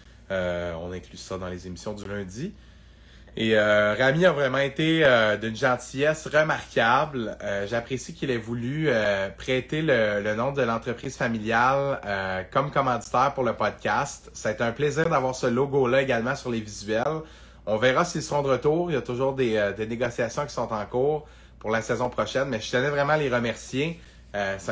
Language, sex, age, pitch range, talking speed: French, male, 30-49, 105-135 Hz, 195 wpm